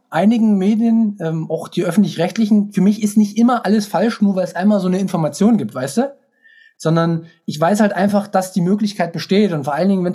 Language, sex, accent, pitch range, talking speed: German, male, German, 165-210 Hz, 220 wpm